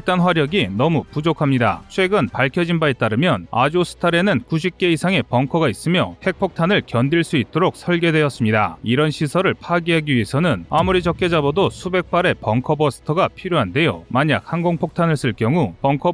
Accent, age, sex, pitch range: native, 30-49, male, 125-170 Hz